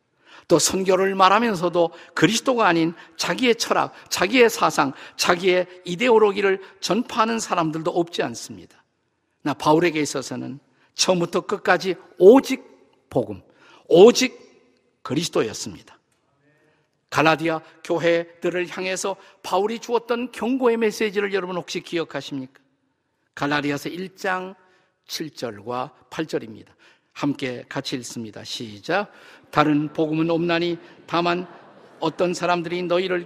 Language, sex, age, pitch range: Korean, male, 50-69, 150-185 Hz